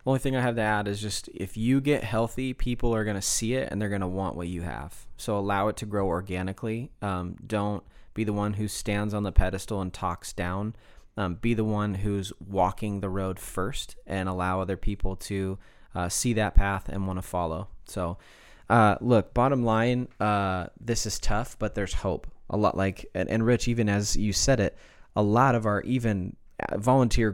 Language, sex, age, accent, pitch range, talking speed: English, male, 20-39, American, 95-115 Hz, 210 wpm